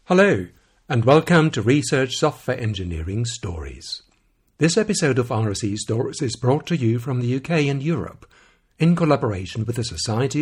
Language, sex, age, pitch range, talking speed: English, male, 60-79, 110-150 Hz, 155 wpm